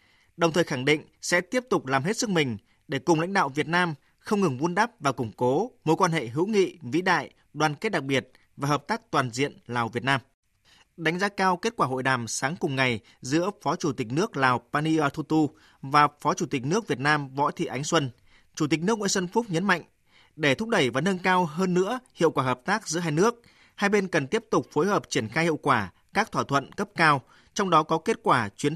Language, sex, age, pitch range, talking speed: Vietnamese, male, 20-39, 135-180 Hz, 240 wpm